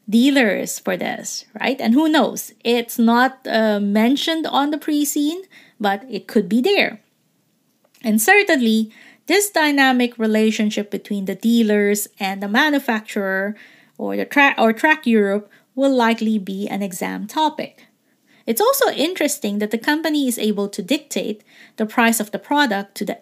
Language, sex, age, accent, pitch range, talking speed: English, female, 20-39, Filipino, 215-285 Hz, 150 wpm